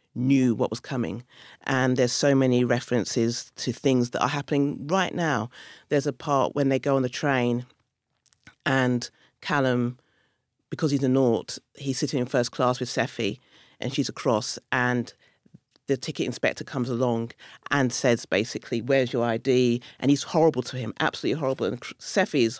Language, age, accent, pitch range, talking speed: English, 40-59, British, 125-160 Hz, 165 wpm